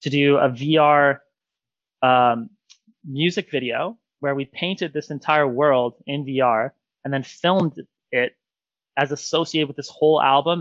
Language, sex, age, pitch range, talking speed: English, male, 20-39, 130-150 Hz, 140 wpm